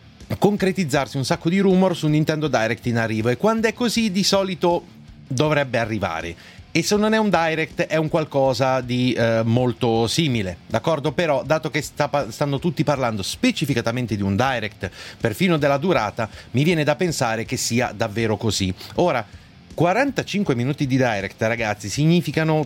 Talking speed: 165 wpm